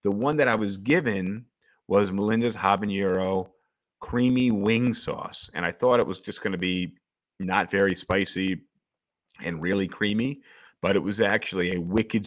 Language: English